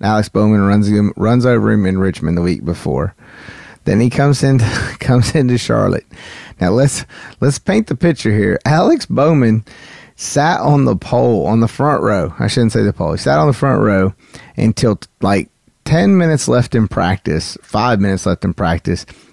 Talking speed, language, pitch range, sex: 180 wpm, English, 100-140 Hz, male